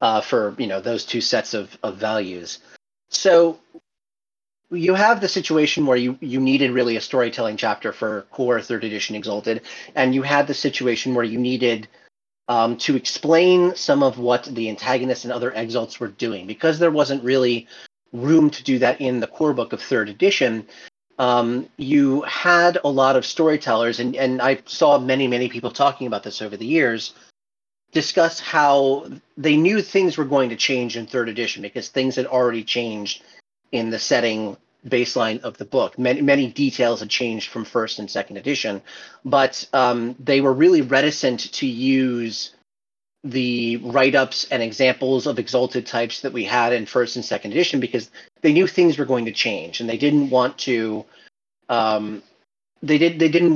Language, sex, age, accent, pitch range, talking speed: English, male, 30-49, American, 115-145 Hz, 180 wpm